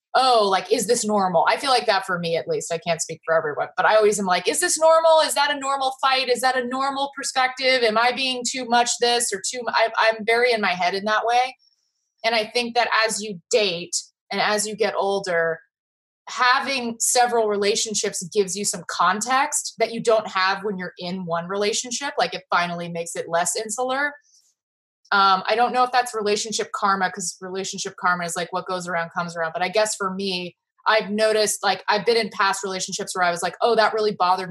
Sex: female